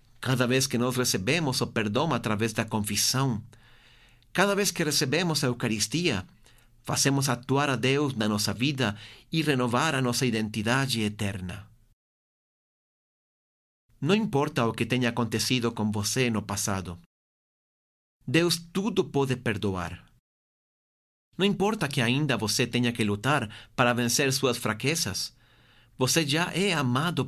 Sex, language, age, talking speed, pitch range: male, Portuguese, 40-59, 130 wpm, 115-145 Hz